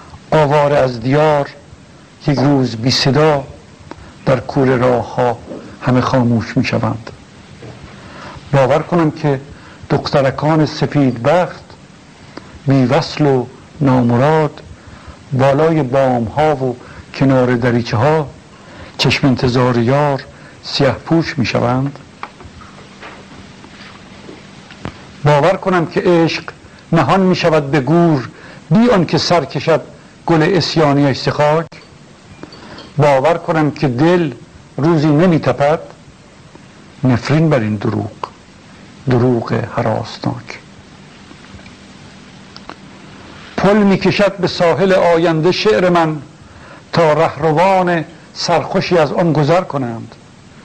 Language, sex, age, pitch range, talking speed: Persian, male, 60-79, 130-165 Hz, 100 wpm